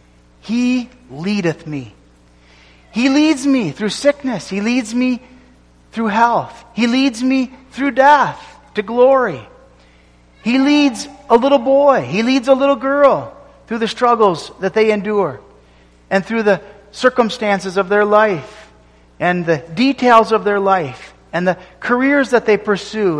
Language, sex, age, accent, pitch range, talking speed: English, male, 40-59, American, 150-250 Hz, 140 wpm